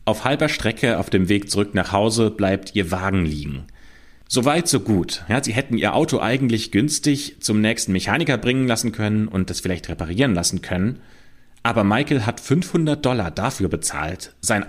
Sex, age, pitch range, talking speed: male, 30-49, 90-120 Hz, 175 wpm